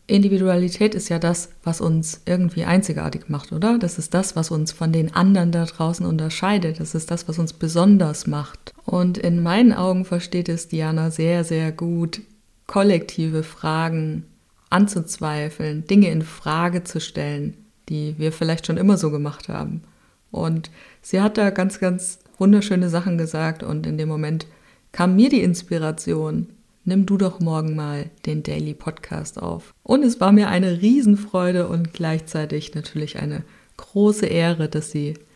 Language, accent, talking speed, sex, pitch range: German, German, 160 wpm, female, 160-190 Hz